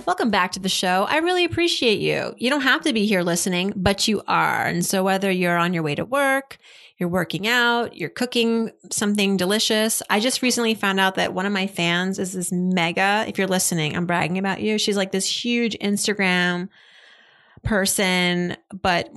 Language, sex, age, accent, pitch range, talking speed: English, female, 30-49, American, 185-230 Hz, 195 wpm